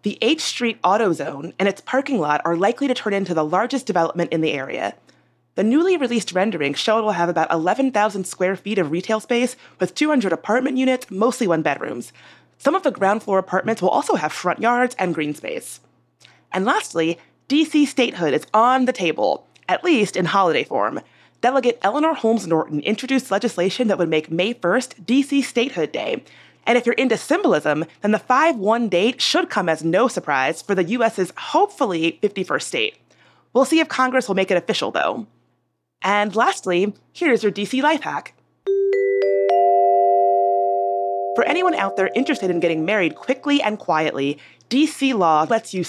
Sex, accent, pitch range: female, American, 170-255 Hz